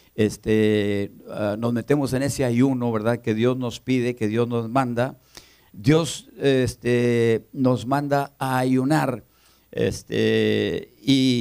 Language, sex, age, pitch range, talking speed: Spanish, male, 50-69, 115-140 Hz, 125 wpm